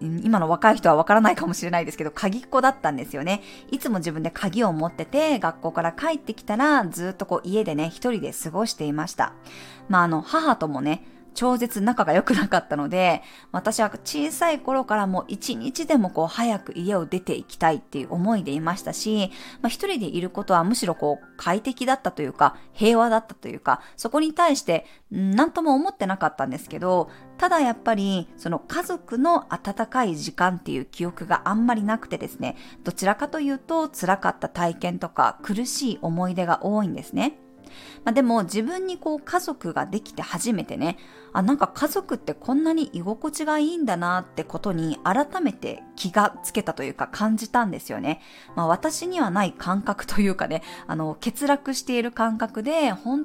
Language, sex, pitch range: Japanese, female, 175-265 Hz